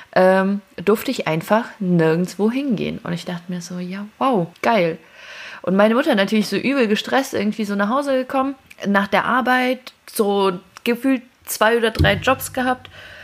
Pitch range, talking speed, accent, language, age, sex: 175-230 Hz, 160 wpm, German, German, 30-49, female